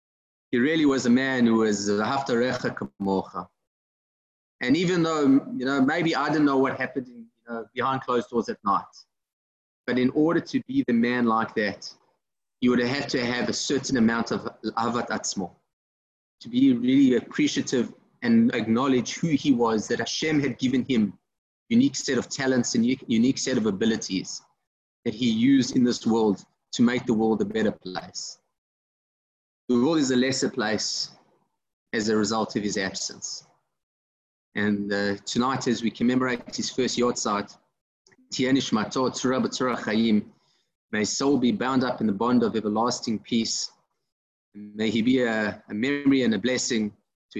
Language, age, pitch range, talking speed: English, 30-49, 110-135 Hz, 155 wpm